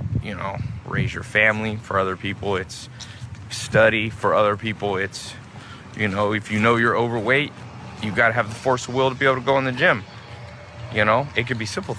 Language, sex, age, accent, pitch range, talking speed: English, male, 20-39, American, 100-115 Hz, 210 wpm